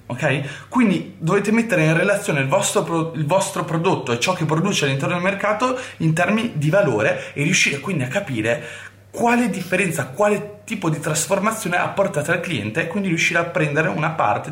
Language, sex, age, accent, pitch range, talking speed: Italian, male, 30-49, native, 120-180 Hz, 170 wpm